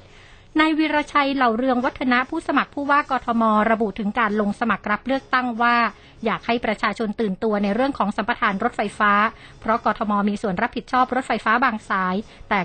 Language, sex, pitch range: Thai, female, 205-245 Hz